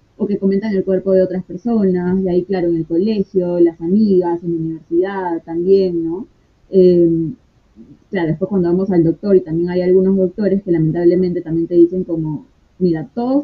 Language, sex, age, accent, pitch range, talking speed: Spanish, female, 20-39, Argentinian, 170-200 Hz, 185 wpm